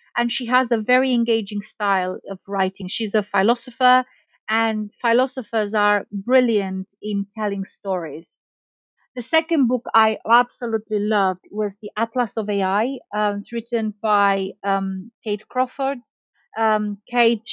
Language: English